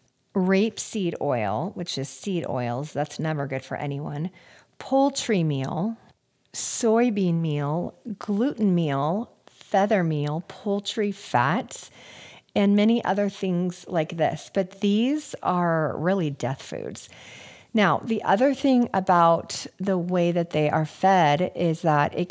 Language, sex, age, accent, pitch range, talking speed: English, female, 40-59, American, 160-215 Hz, 125 wpm